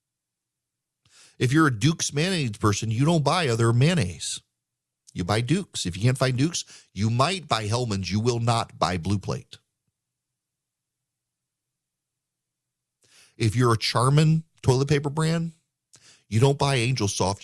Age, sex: 40-59, male